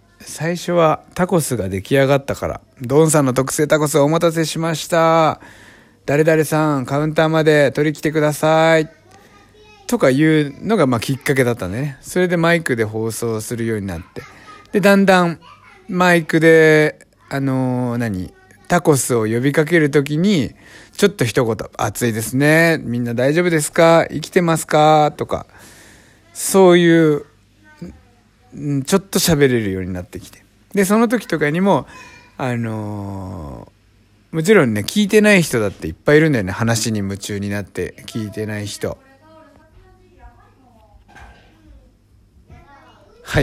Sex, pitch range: male, 105-155 Hz